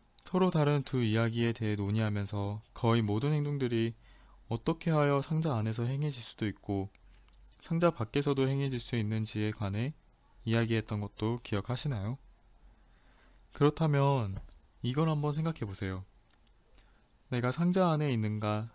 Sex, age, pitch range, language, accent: male, 20-39, 105-145 Hz, Korean, native